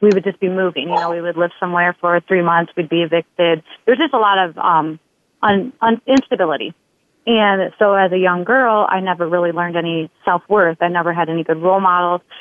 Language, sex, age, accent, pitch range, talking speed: English, female, 30-49, American, 170-190 Hz, 210 wpm